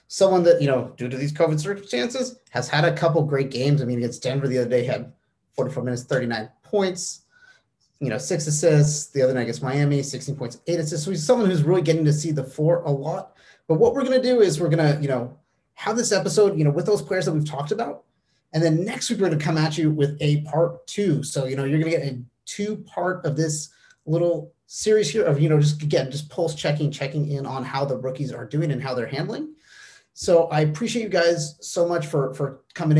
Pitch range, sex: 140-170 Hz, male